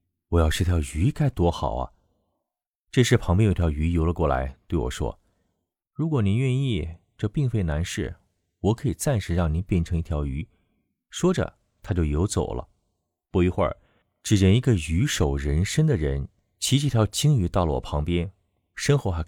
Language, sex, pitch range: Chinese, male, 80-105 Hz